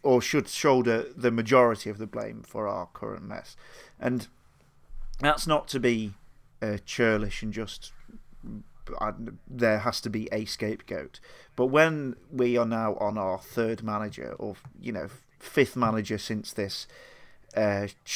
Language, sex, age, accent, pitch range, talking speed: English, male, 40-59, British, 110-125 Hz, 150 wpm